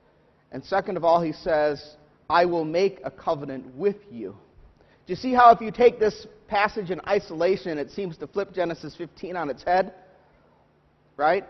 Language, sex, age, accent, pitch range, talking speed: English, male, 40-59, American, 155-200 Hz, 175 wpm